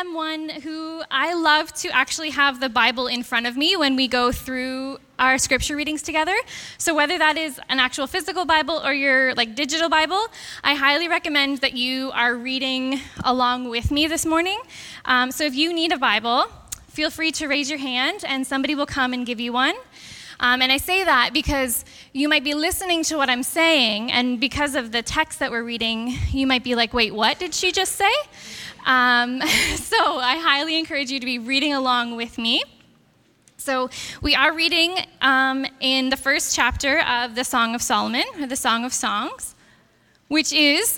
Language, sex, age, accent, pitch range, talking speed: English, female, 10-29, American, 250-310 Hz, 195 wpm